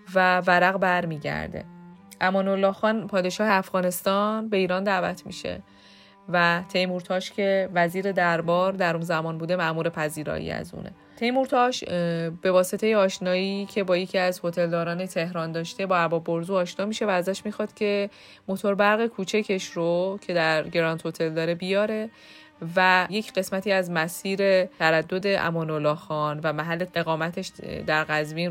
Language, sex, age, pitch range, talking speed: Persian, female, 20-39, 170-195 Hz, 145 wpm